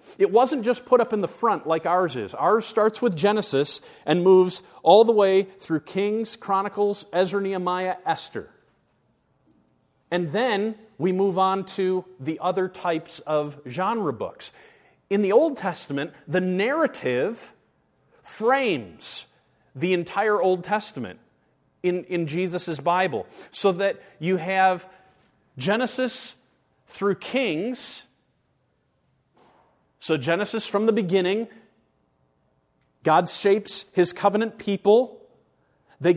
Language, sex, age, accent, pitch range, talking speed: English, male, 40-59, American, 180-225 Hz, 120 wpm